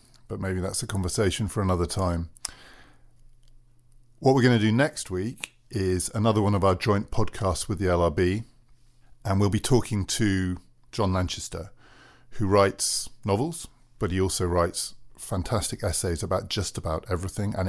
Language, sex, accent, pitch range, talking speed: English, male, British, 90-115 Hz, 155 wpm